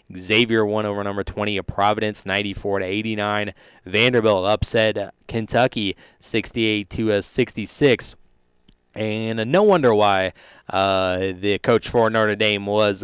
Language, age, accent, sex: English, 20-39, American, male